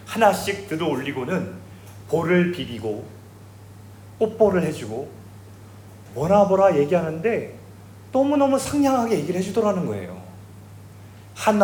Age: 30-49